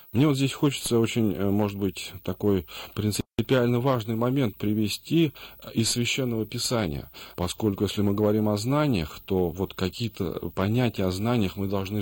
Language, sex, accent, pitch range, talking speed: Russian, male, native, 90-110 Hz, 145 wpm